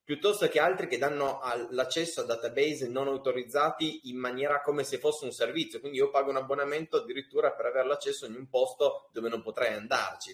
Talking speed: 190 wpm